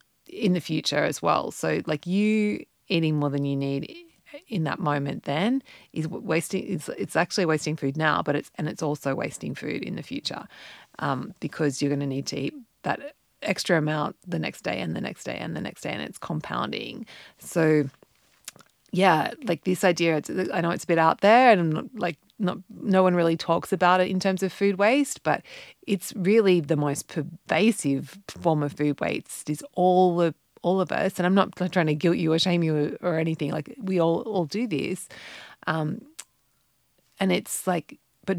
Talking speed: 200 wpm